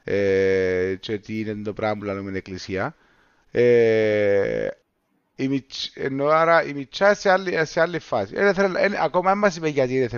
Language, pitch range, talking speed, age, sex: Greek, 130-195 Hz, 75 wpm, 30-49, male